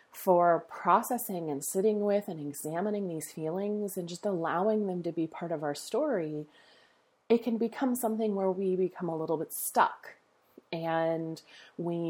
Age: 30-49